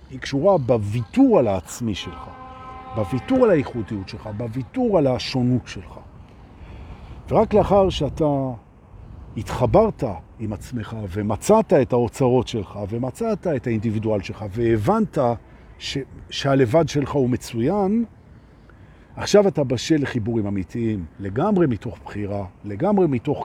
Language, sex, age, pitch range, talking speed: Hebrew, male, 50-69, 105-145 Hz, 110 wpm